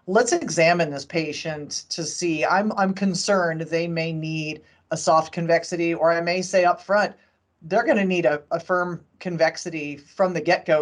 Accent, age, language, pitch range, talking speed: American, 40-59, English, 160-200 Hz, 175 wpm